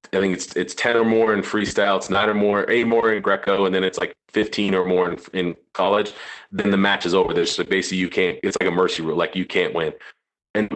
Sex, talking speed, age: male, 270 wpm, 30-49